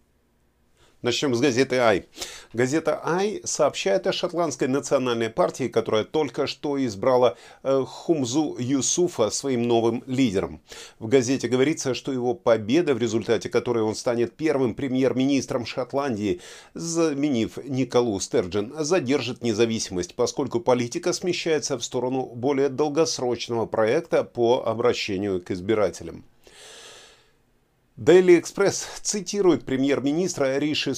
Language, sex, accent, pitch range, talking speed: Russian, male, native, 120-150 Hz, 110 wpm